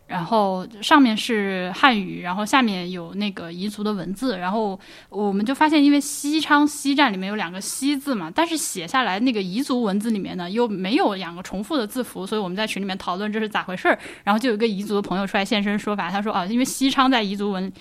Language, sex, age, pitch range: Chinese, female, 10-29, 190-250 Hz